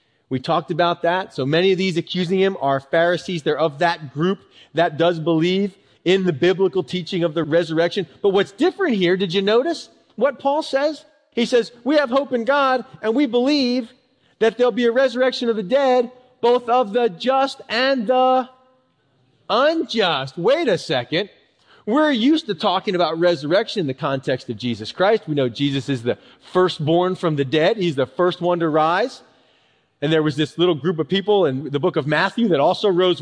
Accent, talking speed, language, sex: American, 195 wpm, English, male